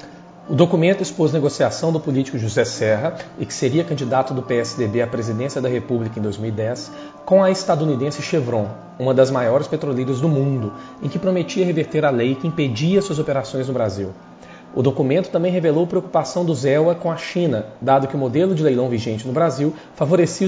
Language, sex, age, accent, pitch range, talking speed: Portuguese, male, 40-59, Brazilian, 130-175 Hz, 180 wpm